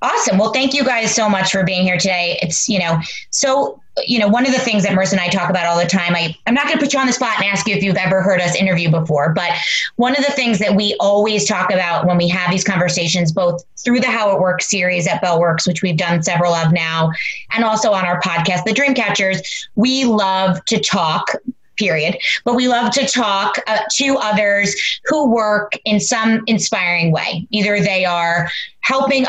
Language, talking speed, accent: English, 225 wpm, American